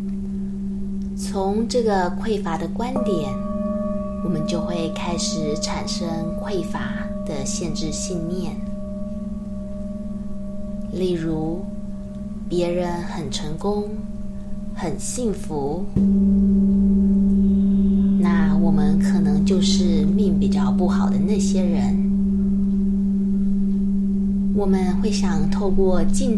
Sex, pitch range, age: female, 195-205 Hz, 20-39